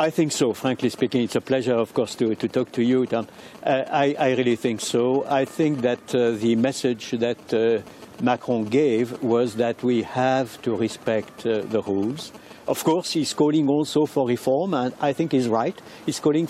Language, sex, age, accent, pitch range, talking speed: English, male, 60-79, French, 125-155 Hz, 200 wpm